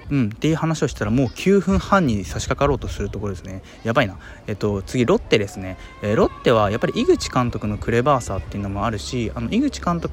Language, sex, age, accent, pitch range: Japanese, male, 20-39, native, 100-150 Hz